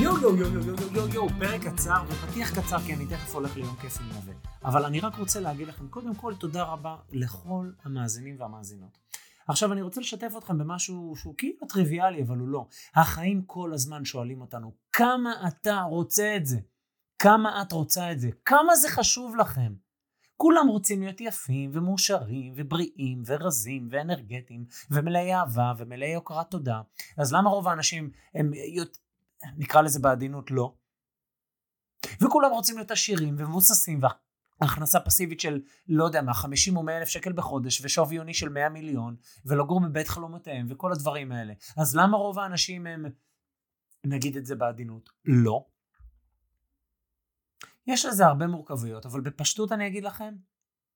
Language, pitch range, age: Hebrew, 125-185 Hz, 30-49